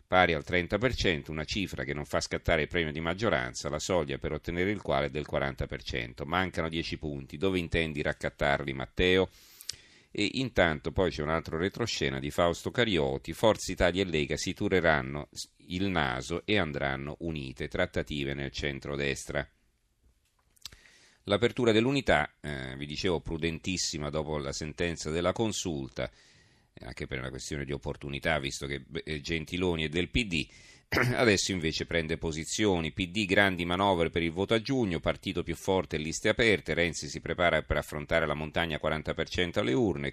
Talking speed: 155 wpm